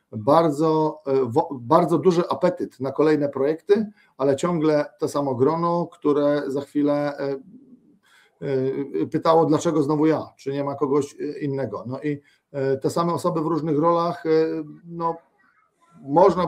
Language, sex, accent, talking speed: Polish, male, native, 125 wpm